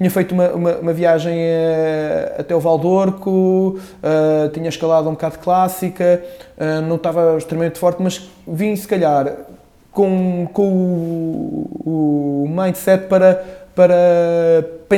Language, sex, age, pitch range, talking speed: Portuguese, male, 20-39, 160-190 Hz, 125 wpm